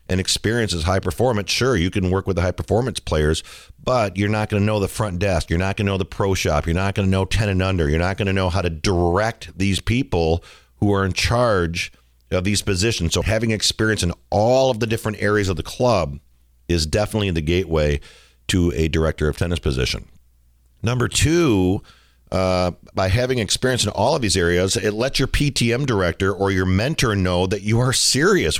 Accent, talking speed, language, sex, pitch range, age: American, 205 wpm, English, male, 90-110 Hz, 50-69